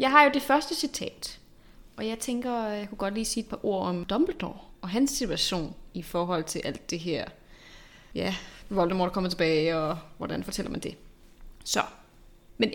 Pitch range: 180-235 Hz